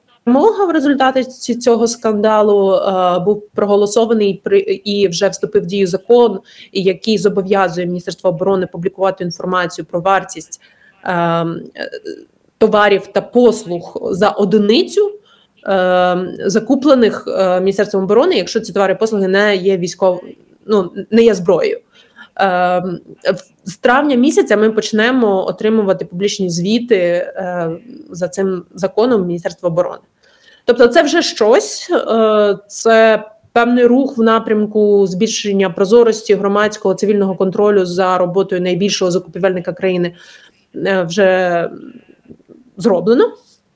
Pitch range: 190-235 Hz